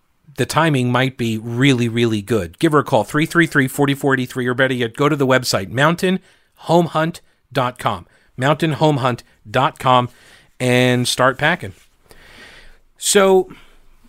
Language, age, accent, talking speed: English, 40-59, American, 105 wpm